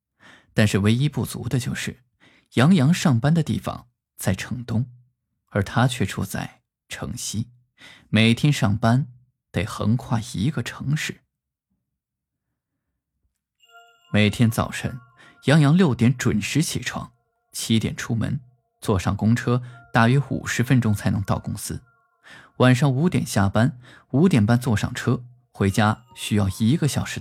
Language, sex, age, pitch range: Chinese, male, 20-39, 110-145 Hz